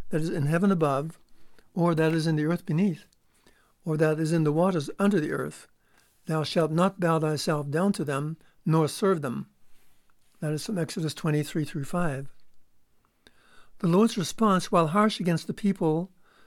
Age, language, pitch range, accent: 60-79, English, 155-190 Hz, American